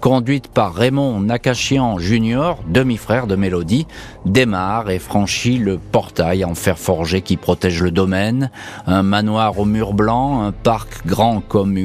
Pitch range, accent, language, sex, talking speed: 95-130 Hz, French, French, male, 145 wpm